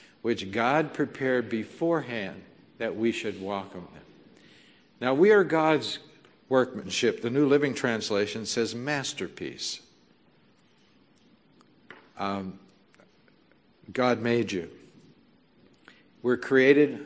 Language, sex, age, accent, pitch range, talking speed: English, male, 60-79, American, 110-145 Hz, 90 wpm